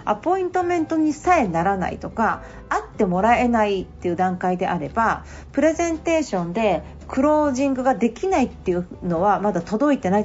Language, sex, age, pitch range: Japanese, female, 40-59, 185-280 Hz